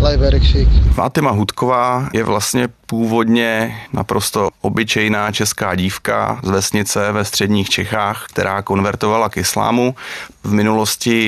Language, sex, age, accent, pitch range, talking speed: Czech, male, 30-49, native, 100-110 Hz, 105 wpm